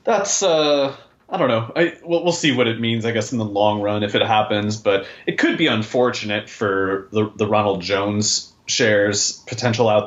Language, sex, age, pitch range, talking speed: English, male, 30-49, 100-125 Hz, 205 wpm